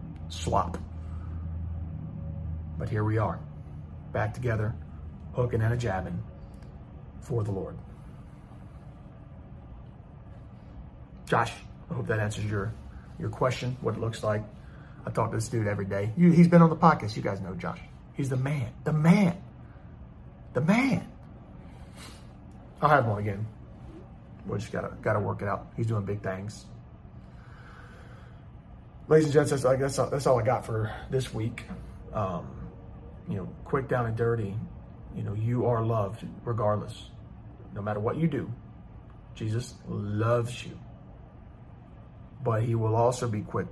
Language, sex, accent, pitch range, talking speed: English, male, American, 100-120 Hz, 140 wpm